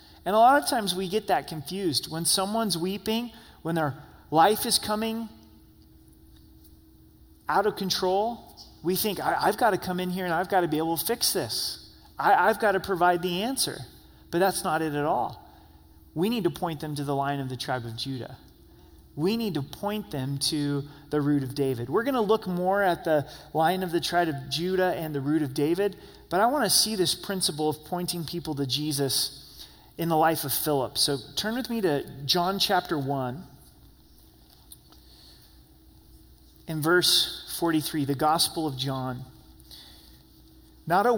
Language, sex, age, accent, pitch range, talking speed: English, male, 30-49, American, 135-185 Hz, 180 wpm